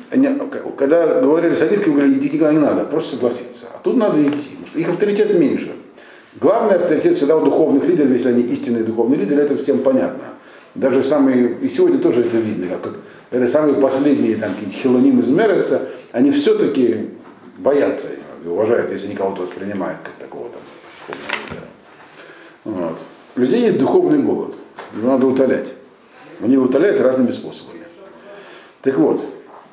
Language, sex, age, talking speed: Russian, male, 50-69, 150 wpm